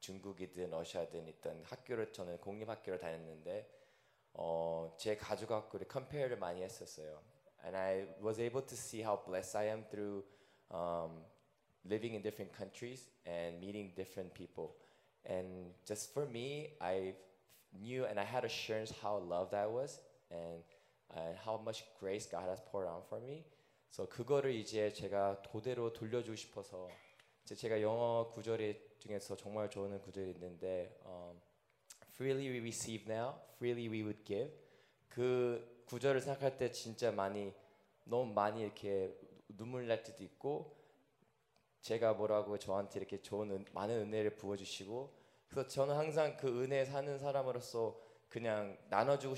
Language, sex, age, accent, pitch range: Korean, male, 20-39, native, 95-115 Hz